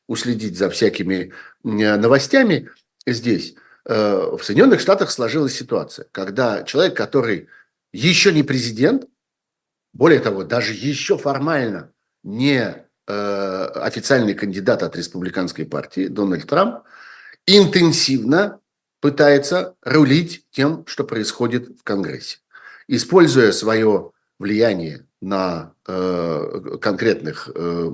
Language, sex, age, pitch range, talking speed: Russian, male, 50-69, 110-155 Hz, 90 wpm